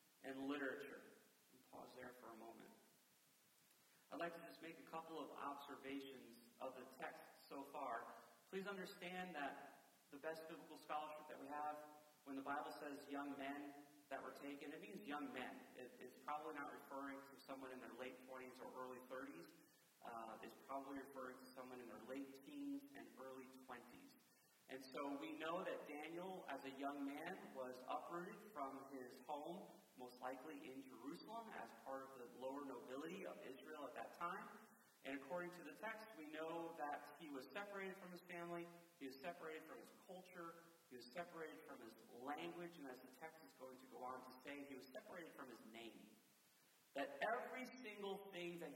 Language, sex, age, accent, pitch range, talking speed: English, male, 40-59, American, 135-175 Hz, 180 wpm